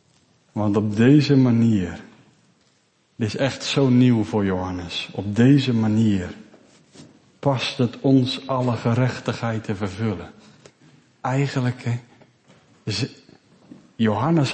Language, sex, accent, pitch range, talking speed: Dutch, male, Dutch, 110-140 Hz, 95 wpm